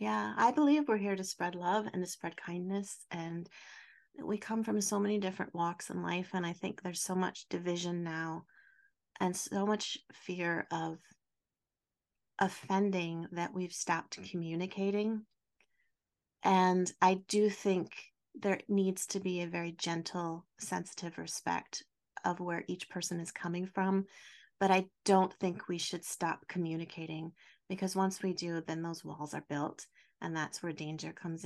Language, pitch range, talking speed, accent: English, 170-195 Hz, 155 wpm, American